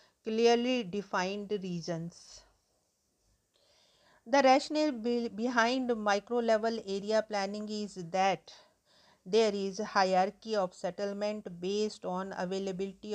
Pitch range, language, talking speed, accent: 190-220 Hz, English, 90 wpm, Indian